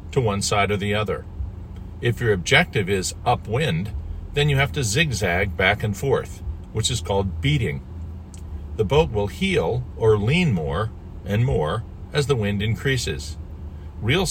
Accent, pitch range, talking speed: American, 90-125 Hz, 155 wpm